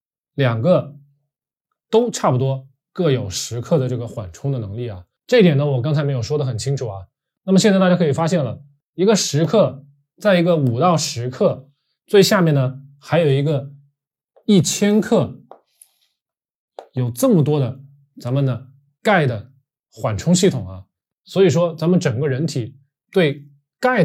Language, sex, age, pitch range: Chinese, male, 20-39, 130-155 Hz